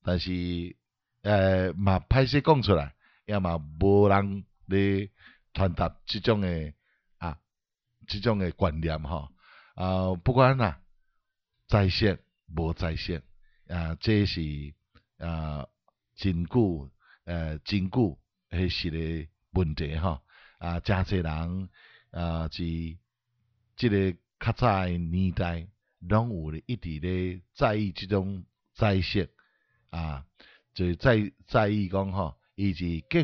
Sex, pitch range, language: male, 85-110 Hz, Chinese